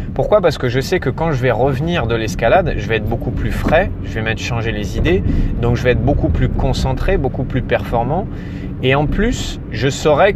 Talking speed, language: 225 wpm, French